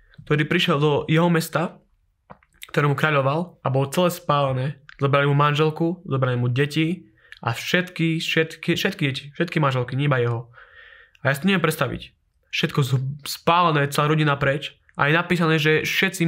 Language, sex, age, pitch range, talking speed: Slovak, male, 20-39, 145-175 Hz, 150 wpm